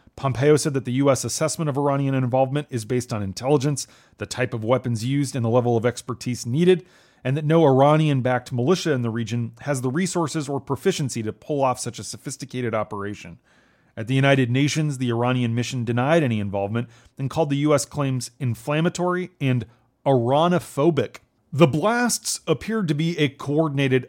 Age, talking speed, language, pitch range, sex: 30-49, 170 wpm, English, 115-145 Hz, male